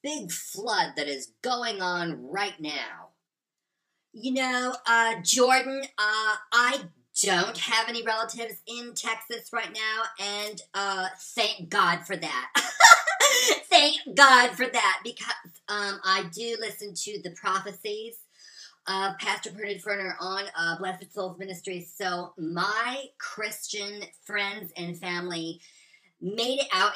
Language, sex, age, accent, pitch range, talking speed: English, male, 40-59, American, 175-235 Hz, 130 wpm